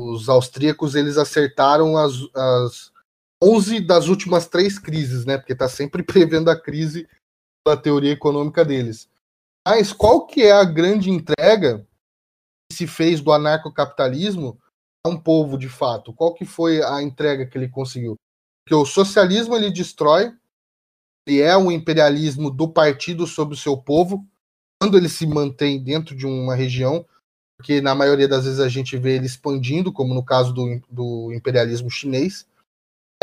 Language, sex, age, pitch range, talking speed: Portuguese, male, 20-39, 135-180 Hz, 160 wpm